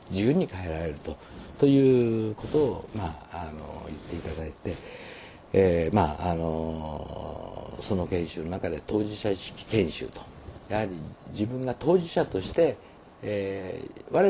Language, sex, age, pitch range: Japanese, male, 50-69, 85-125 Hz